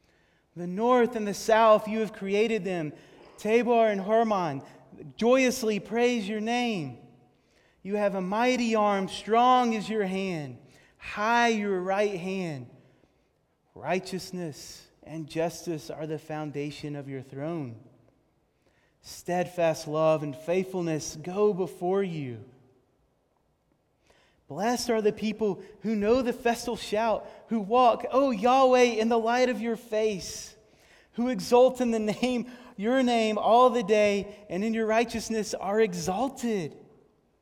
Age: 30-49